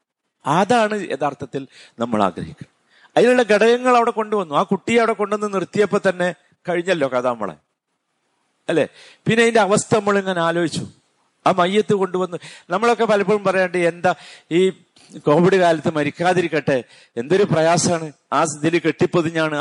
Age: 50-69